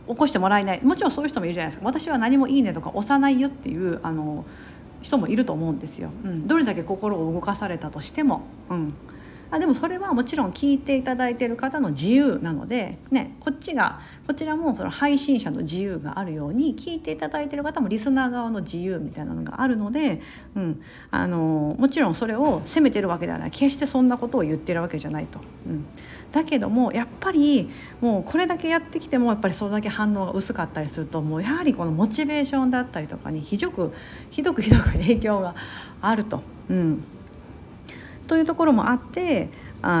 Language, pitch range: Japanese, 175-275 Hz